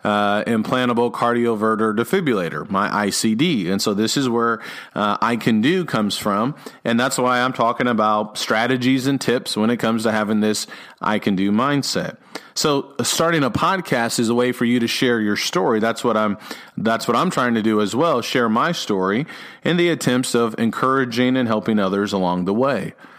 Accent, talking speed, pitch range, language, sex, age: American, 190 wpm, 105-125 Hz, English, male, 40-59